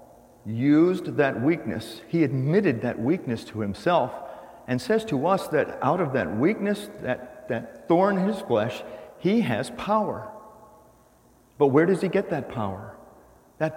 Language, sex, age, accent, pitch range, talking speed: English, male, 50-69, American, 110-145 Hz, 155 wpm